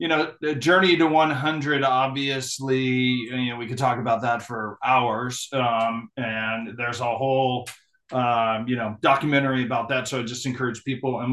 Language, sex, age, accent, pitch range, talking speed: English, male, 40-59, American, 120-150 Hz, 170 wpm